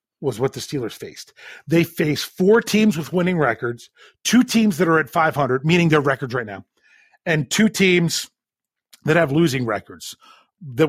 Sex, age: male, 40-59